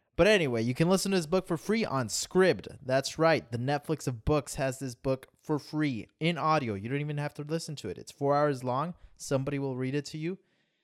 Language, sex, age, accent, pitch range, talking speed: English, male, 20-39, American, 115-155 Hz, 240 wpm